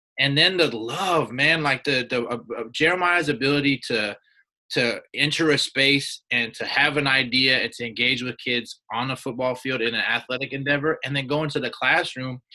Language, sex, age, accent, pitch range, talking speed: English, male, 20-39, American, 120-150 Hz, 190 wpm